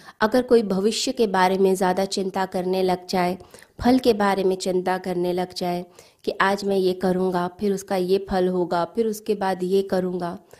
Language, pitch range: Hindi, 185-215 Hz